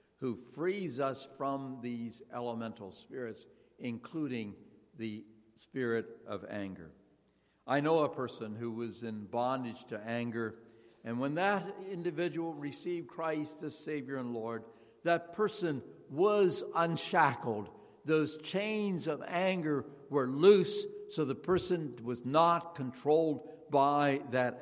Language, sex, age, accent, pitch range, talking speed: English, male, 60-79, American, 120-180 Hz, 120 wpm